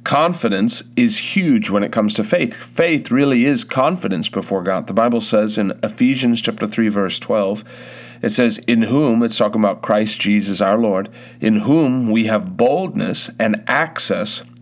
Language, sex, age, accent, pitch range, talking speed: English, male, 40-59, American, 105-120 Hz, 170 wpm